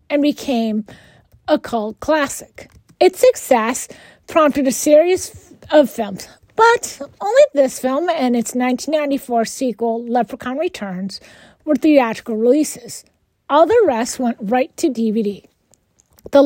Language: English